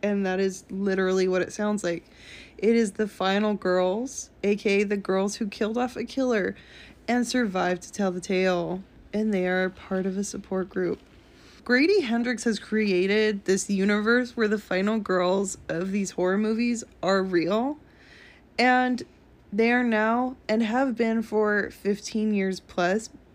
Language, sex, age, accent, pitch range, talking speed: English, female, 20-39, American, 190-225 Hz, 160 wpm